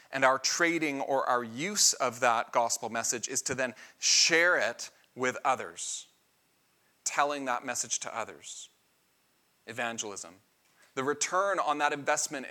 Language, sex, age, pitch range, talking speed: English, male, 30-49, 130-160 Hz, 135 wpm